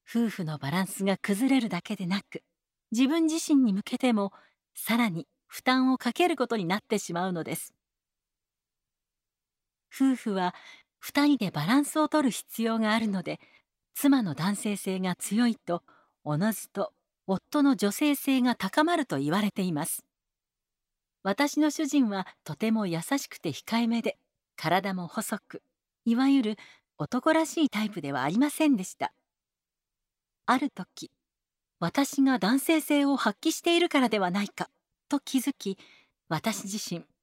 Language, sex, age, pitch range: Japanese, female, 40-59, 190-270 Hz